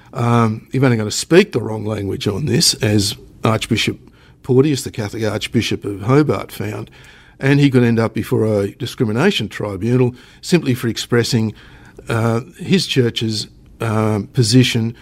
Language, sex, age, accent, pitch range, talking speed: English, male, 60-79, Australian, 105-130 Hz, 150 wpm